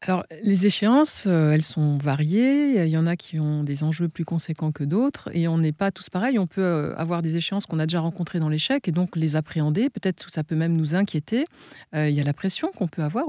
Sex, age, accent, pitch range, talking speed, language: female, 40-59, French, 155-205 Hz, 255 wpm, French